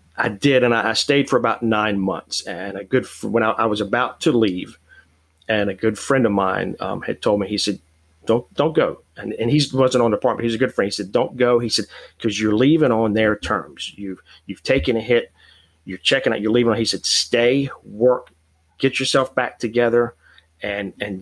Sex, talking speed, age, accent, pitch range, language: male, 220 wpm, 30-49, American, 100-120 Hz, English